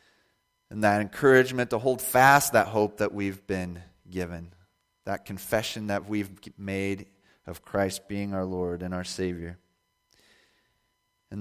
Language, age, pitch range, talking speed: English, 30-49, 95-120 Hz, 135 wpm